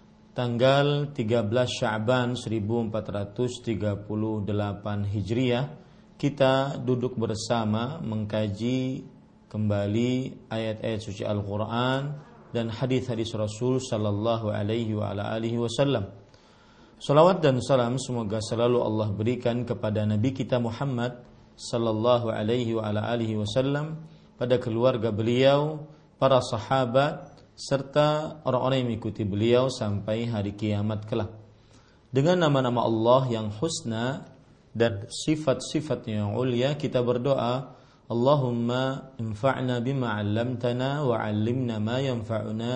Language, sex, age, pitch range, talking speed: Indonesian, male, 40-59, 110-130 Hz, 95 wpm